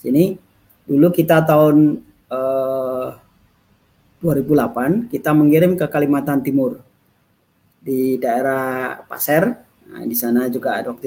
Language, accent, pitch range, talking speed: Indonesian, native, 115-135 Hz, 105 wpm